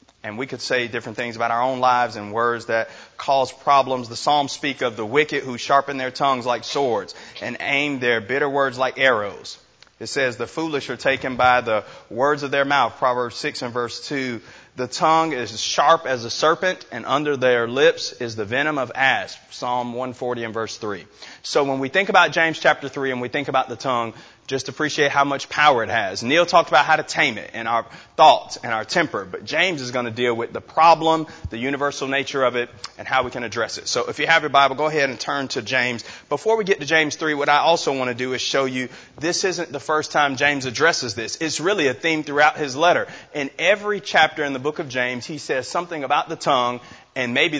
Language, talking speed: English, 230 wpm